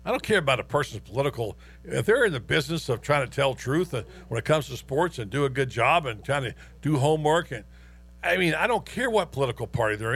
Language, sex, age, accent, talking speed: English, male, 60-79, American, 250 wpm